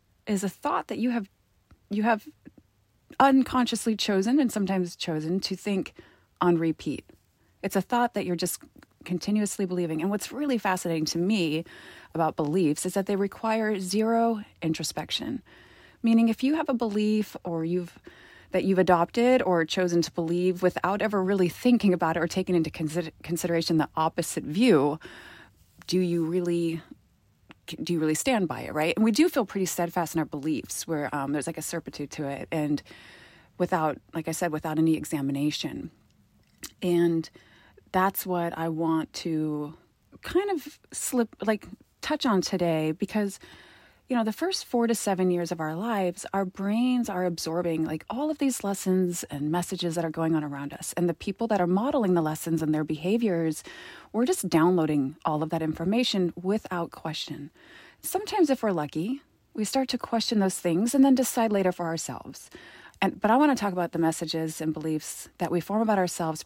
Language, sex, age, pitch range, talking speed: English, female, 30-49, 165-215 Hz, 180 wpm